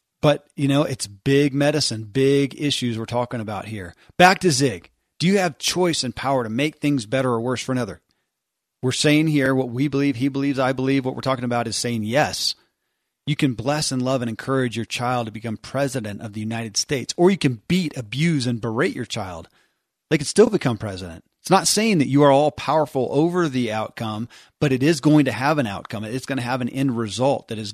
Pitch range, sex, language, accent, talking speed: 115-145 Hz, male, English, American, 225 wpm